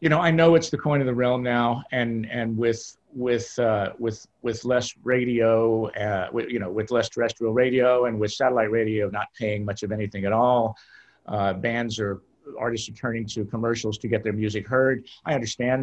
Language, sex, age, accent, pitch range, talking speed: English, male, 50-69, American, 110-125 Hz, 205 wpm